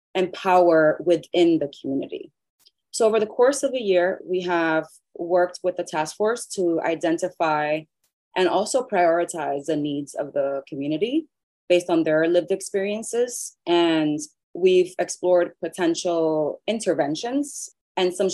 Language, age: English, 30-49